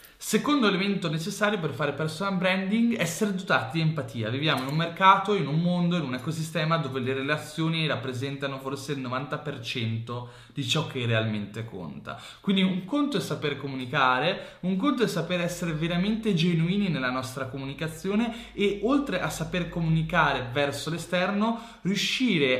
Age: 20-39